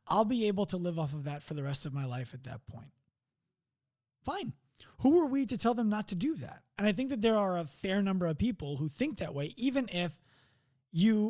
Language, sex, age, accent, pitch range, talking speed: English, male, 20-39, American, 135-205 Hz, 245 wpm